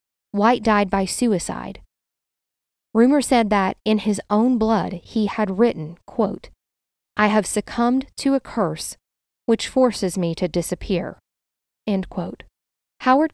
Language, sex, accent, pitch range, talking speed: English, female, American, 180-235 Hz, 115 wpm